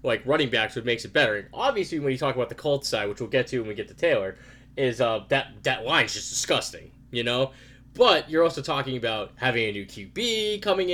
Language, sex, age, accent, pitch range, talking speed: English, male, 20-39, American, 125-145 Hz, 245 wpm